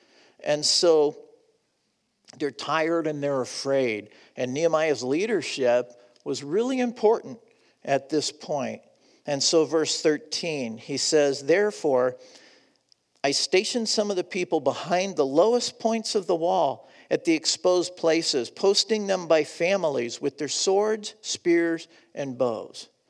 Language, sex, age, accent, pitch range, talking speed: English, male, 50-69, American, 160-235 Hz, 130 wpm